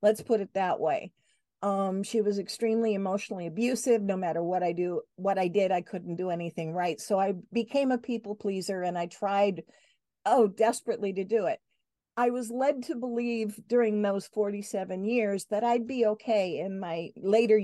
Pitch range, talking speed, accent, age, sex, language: 190-230 Hz, 185 wpm, American, 50-69, female, English